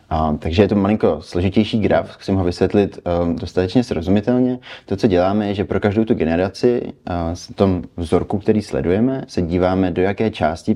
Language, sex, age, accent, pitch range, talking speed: Czech, male, 30-49, native, 85-100 Hz, 185 wpm